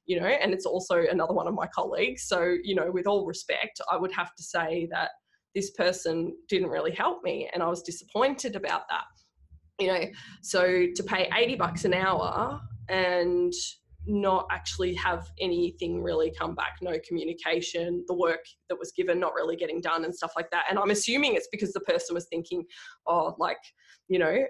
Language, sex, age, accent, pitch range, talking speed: English, female, 20-39, Australian, 170-215 Hz, 195 wpm